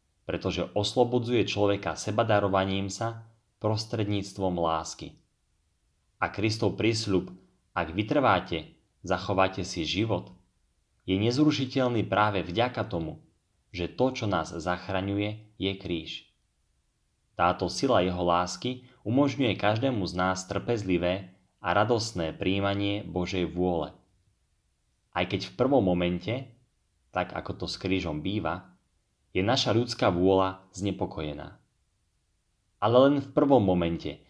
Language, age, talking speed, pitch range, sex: Slovak, 30-49, 110 wpm, 90-115 Hz, male